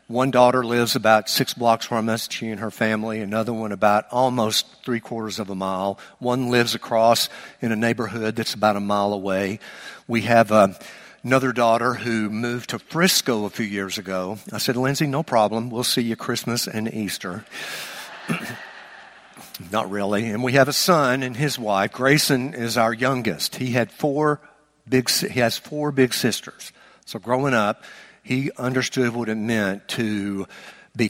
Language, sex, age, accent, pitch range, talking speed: English, male, 60-79, American, 105-125 Hz, 165 wpm